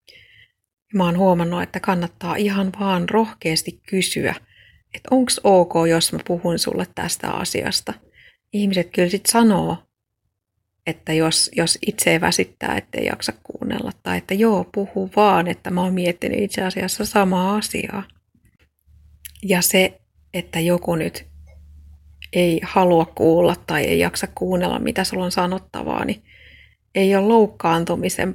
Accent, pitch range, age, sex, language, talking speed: native, 165-200 Hz, 30-49, female, Finnish, 140 wpm